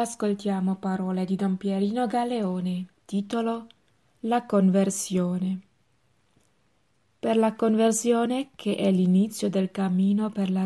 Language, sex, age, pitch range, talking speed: Italian, female, 20-39, 190-215 Hz, 105 wpm